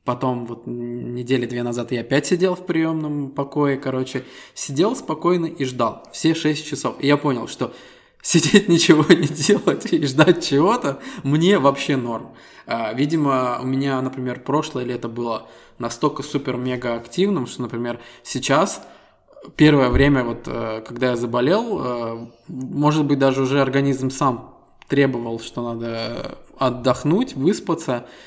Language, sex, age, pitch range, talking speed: Russian, male, 20-39, 125-140 Hz, 130 wpm